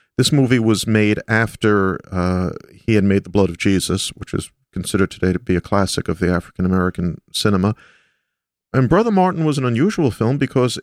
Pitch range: 95-120 Hz